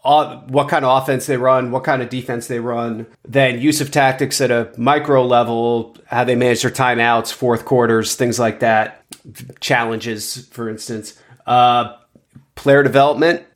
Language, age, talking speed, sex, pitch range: English, 30-49, 160 wpm, male, 130-150 Hz